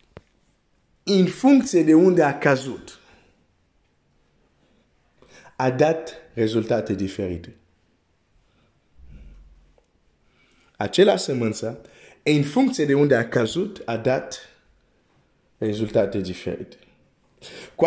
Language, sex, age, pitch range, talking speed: Romanian, male, 50-69, 95-160 Hz, 75 wpm